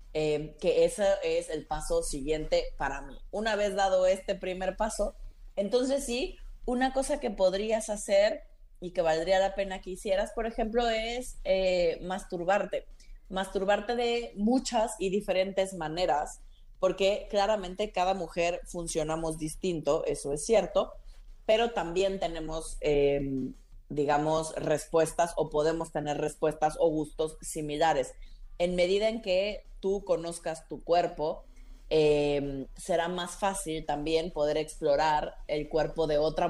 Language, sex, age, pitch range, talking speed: Spanish, female, 30-49, 155-195 Hz, 135 wpm